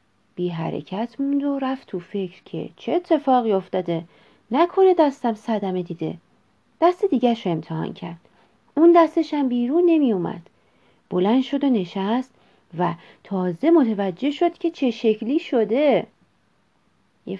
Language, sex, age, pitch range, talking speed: Persian, female, 40-59, 195-285 Hz, 125 wpm